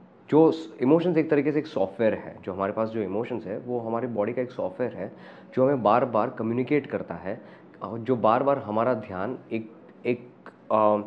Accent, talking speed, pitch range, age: native, 195 wpm, 100-130 Hz, 20-39